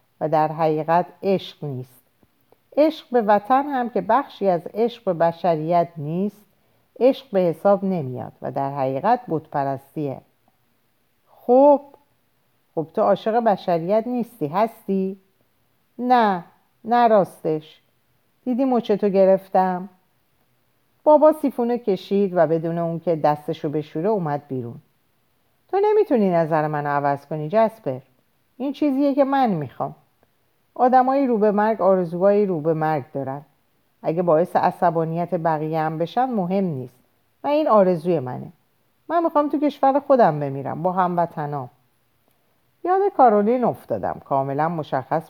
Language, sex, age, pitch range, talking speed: Persian, female, 50-69, 150-225 Hz, 125 wpm